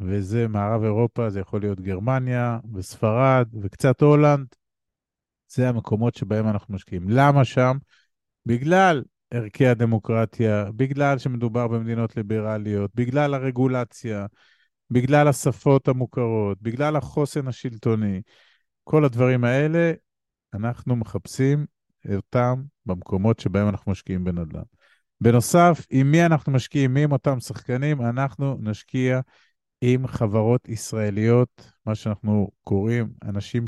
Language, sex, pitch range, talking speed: Hebrew, male, 110-140 Hz, 110 wpm